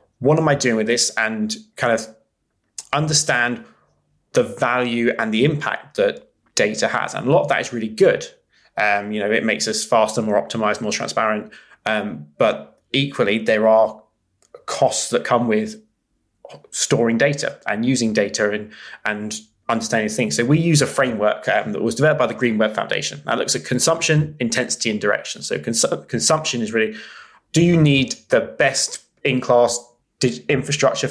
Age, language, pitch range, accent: 20-39, English, 110-140 Hz, British